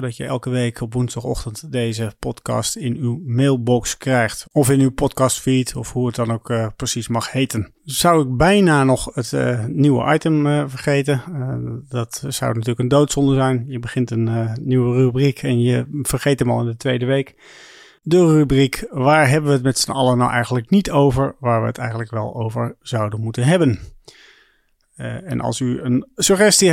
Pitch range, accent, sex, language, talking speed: 120-150 Hz, Dutch, male, Dutch, 190 wpm